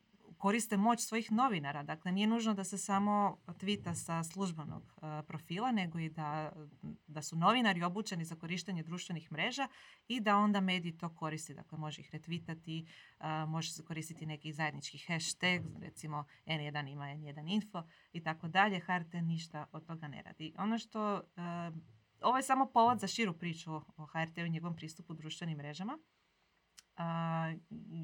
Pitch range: 160-200 Hz